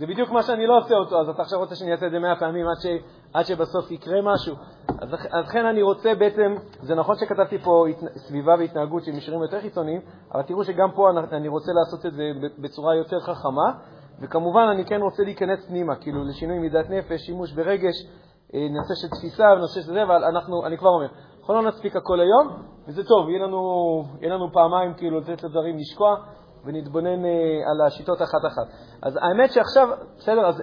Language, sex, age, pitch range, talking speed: Hebrew, male, 30-49, 160-200 Hz, 195 wpm